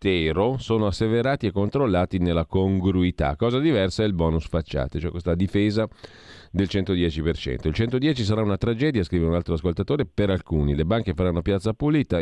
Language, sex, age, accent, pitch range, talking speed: Italian, male, 40-59, native, 85-105 Hz, 160 wpm